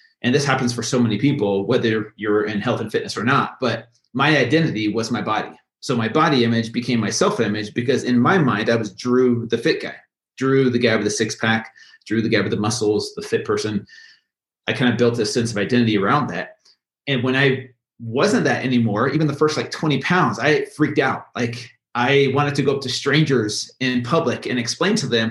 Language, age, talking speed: English, 30-49, 225 wpm